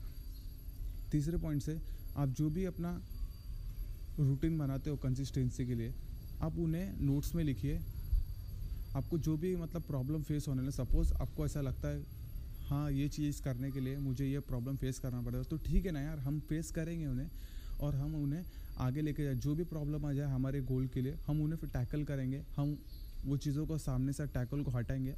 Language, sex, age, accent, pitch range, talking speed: Hindi, male, 20-39, native, 130-150 Hz, 195 wpm